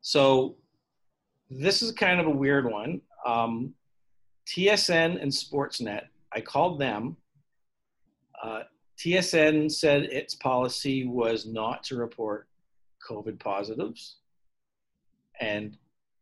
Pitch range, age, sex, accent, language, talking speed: 115-155 Hz, 50-69, male, American, English, 100 wpm